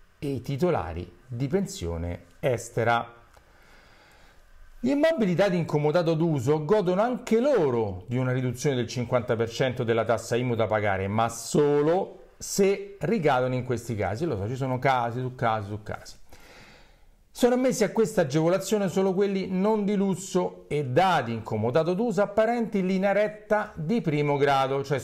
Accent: native